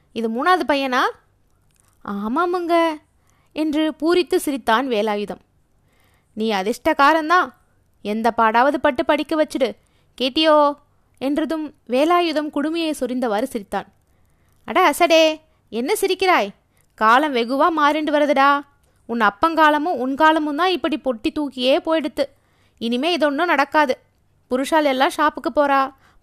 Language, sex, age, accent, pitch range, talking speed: Tamil, female, 20-39, native, 245-315 Hz, 105 wpm